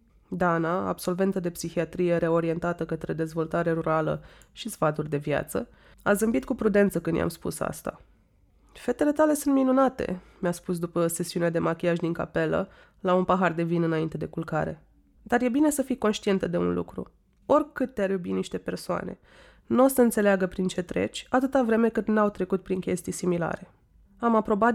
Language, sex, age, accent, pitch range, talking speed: Romanian, female, 20-39, native, 170-220 Hz, 170 wpm